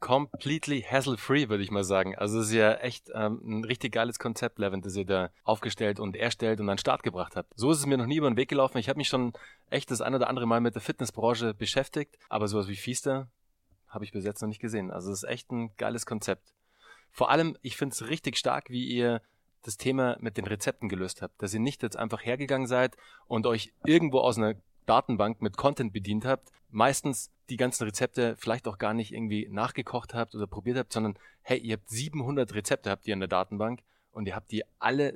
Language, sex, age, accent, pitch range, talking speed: German, male, 30-49, German, 110-130 Hz, 225 wpm